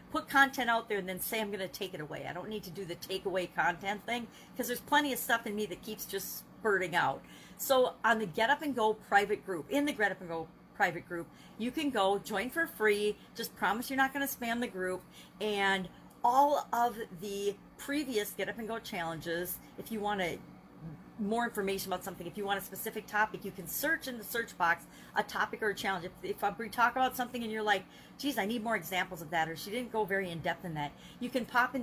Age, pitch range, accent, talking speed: 40-59, 185-235 Hz, American, 245 wpm